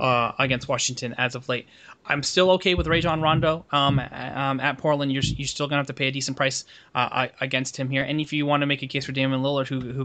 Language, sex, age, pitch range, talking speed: English, male, 20-39, 130-155 Hz, 265 wpm